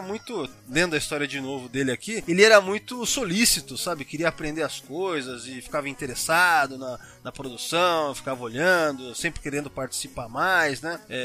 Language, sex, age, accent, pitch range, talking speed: Portuguese, male, 20-39, Brazilian, 150-215 Hz, 170 wpm